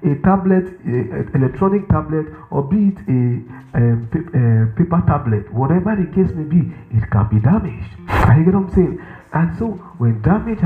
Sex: male